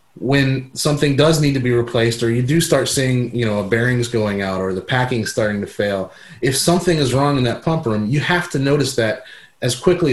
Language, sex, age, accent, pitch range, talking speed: English, male, 30-49, American, 110-140 Hz, 225 wpm